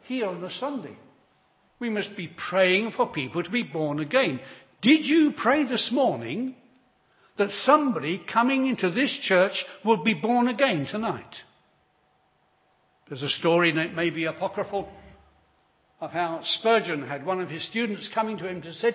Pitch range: 175-250 Hz